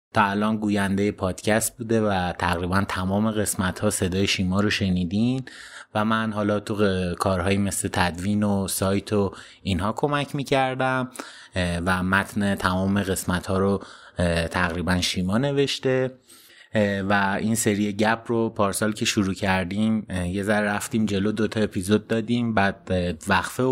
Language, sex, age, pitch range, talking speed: Persian, male, 30-49, 95-115 Hz, 135 wpm